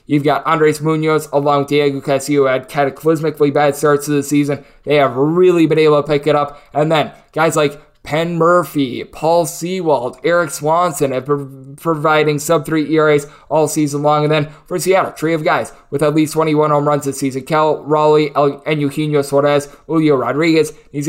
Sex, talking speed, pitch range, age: male, 180 wpm, 145-165 Hz, 20-39